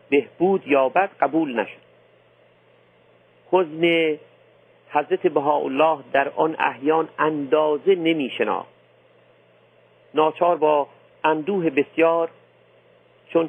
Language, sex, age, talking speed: Persian, male, 50-69, 75 wpm